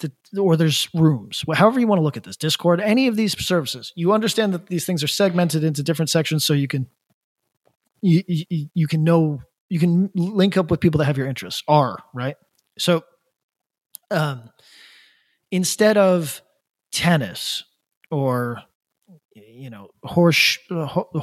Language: English